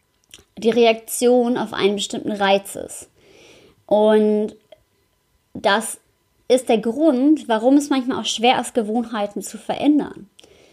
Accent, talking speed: German, 115 wpm